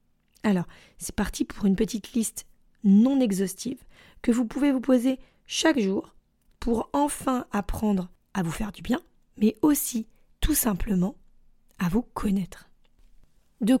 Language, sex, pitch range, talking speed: French, female, 195-250 Hz, 140 wpm